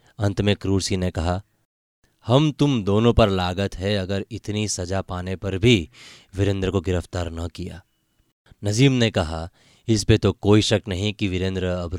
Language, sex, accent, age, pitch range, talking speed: Hindi, male, native, 20-39, 95-120 Hz, 175 wpm